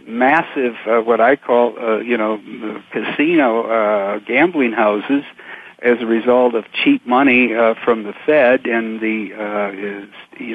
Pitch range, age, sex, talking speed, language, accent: 115-135 Hz, 60-79, male, 155 wpm, English, American